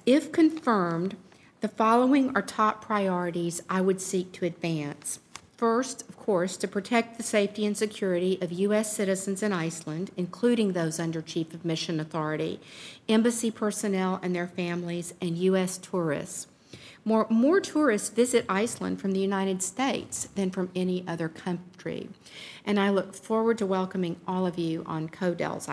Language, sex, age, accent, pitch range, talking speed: English, female, 50-69, American, 180-220 Hz, 155 wpm